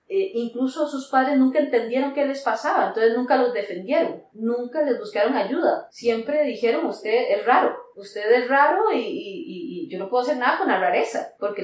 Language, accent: Spanish, Colombian